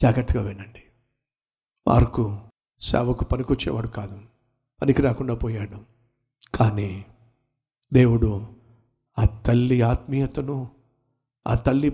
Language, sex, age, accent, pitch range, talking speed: Telugu, male, 50-69, native, 120-165 Hz, 80 wpm